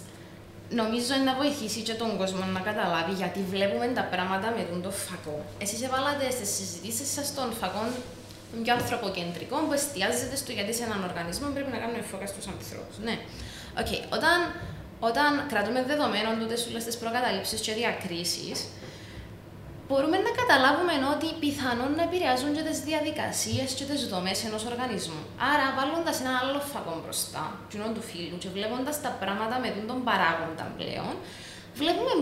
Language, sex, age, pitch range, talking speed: Greek, female, 20-39, 205-270 Hz, 150 wpm